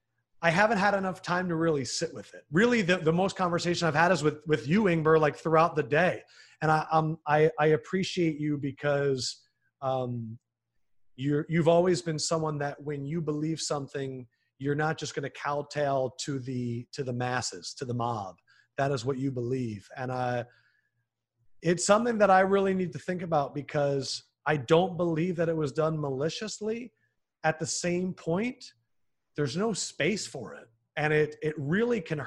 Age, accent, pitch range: 40-59, American, 130-180 Hz